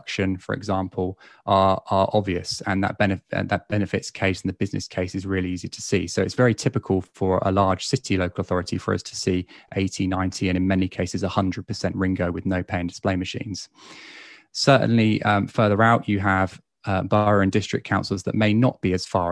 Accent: British